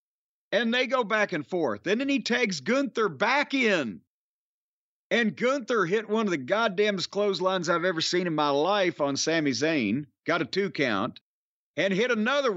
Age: 50-69